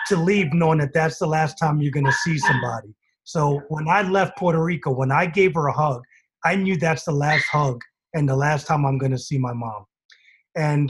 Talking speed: 230 wpm